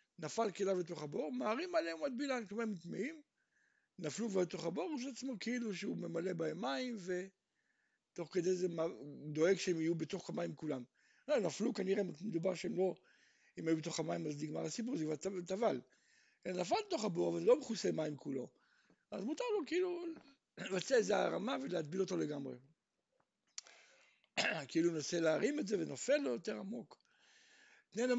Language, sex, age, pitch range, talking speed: Hebrew, male, 60-79, 165-260 Hz, 145 wpm